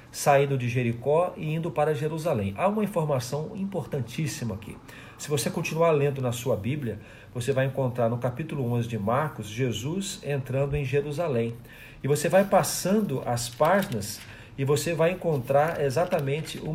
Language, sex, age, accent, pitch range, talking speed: Portuguese, male, 50-69, Brazilian, 120-165 Hz, 155 wpm